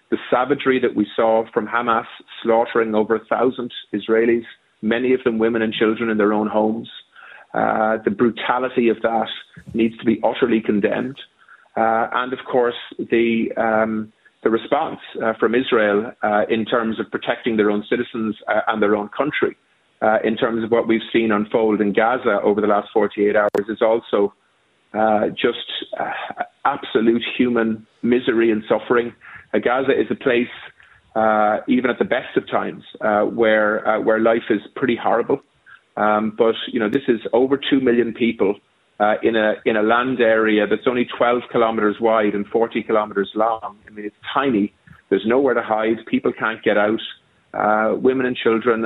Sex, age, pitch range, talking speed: male, 30-49, 110-120 Hz, 175 wpm